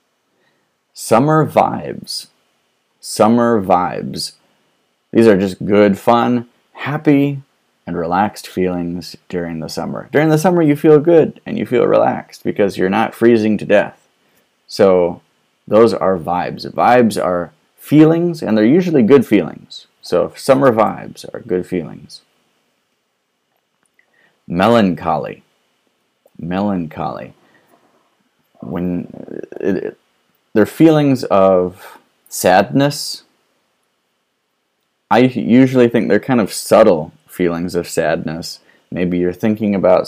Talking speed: 110 wpm